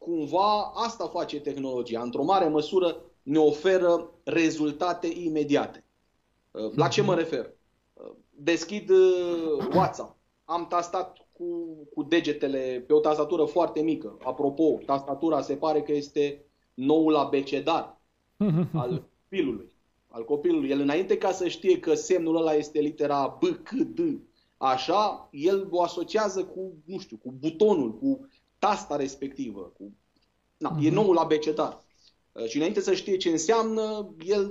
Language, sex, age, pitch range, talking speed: Romanian, male, 30-49, 145-185 Hz, 130 wpm